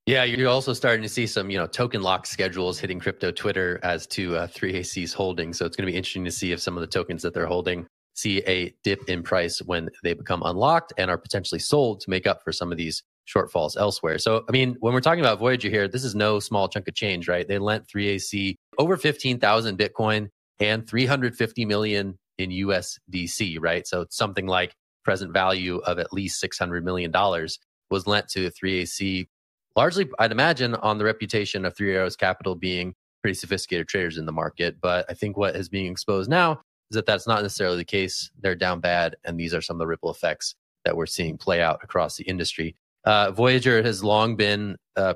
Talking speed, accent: 210 wpm, American